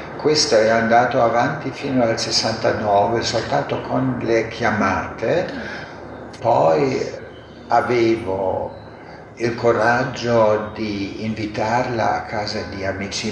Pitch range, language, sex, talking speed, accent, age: 100-120 Hz, Italian, male, 95 wpm, native, 60-79